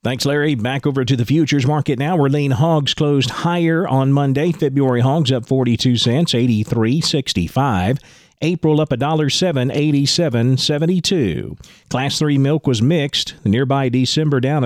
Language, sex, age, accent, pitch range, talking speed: English, male, 40-59, American, 130-160 Hz, 140 wpm